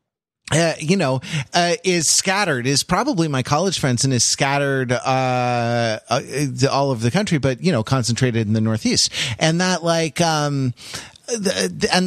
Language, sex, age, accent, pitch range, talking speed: English, male, 30-49, American, 115-140 Hz, 155 wpm